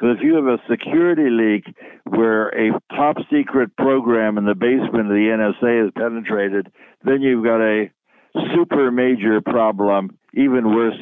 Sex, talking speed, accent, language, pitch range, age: male, 150 wpm, American, English, 105-125 Hz, 60-79